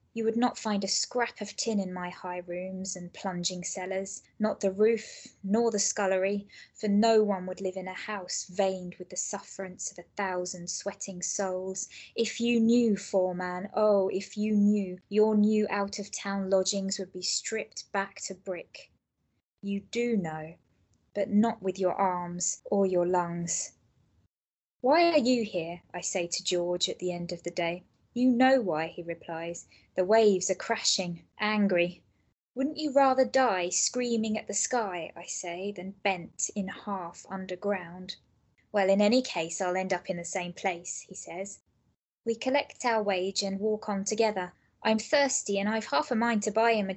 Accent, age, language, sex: British, 20-39, English, female